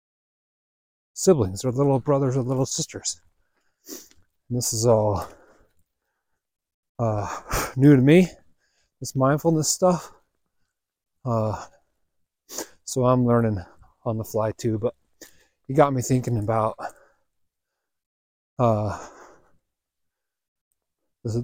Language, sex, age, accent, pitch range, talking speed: English, male, 30-49, American, 105-135 Hz, 90 wpm